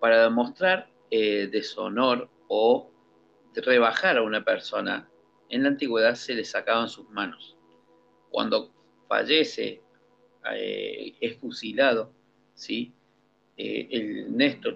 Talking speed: 110 wpm